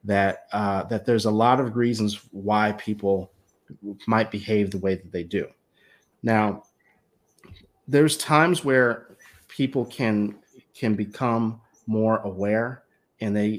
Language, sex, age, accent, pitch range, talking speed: English, male, 30-49, American, 100-115 Hz, 130 wpm